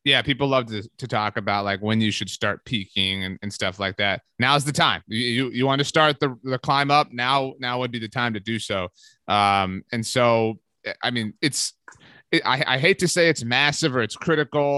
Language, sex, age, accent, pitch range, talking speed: English, male, 30-49, American, 110-130 Hz, 230 wpm